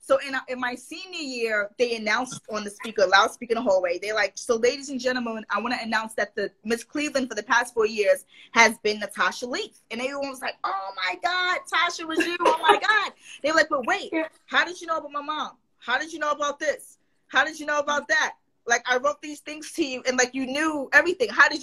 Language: English